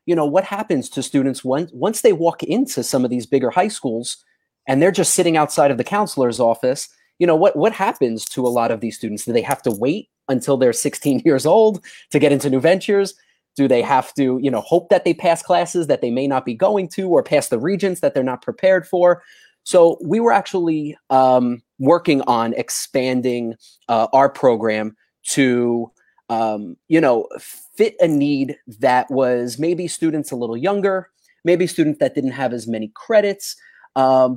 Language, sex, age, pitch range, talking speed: English, male, 30-49, 125-170 Hz, 195 wpm